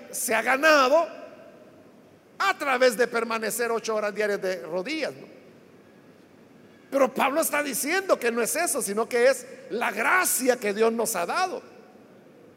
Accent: Mexican